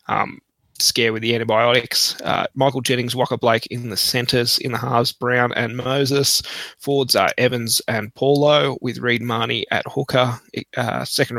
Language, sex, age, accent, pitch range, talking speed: English, male, 20-39, Australian, 115-130 Hz, 165 wpm